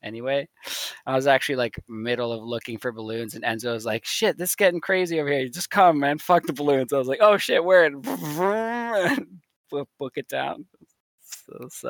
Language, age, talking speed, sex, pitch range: English, 20-39, 190 wpm, male, 115-150 Hz